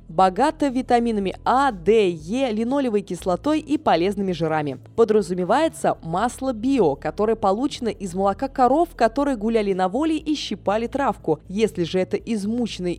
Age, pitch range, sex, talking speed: 20-39, 185-265 Hz, female, 135 wpm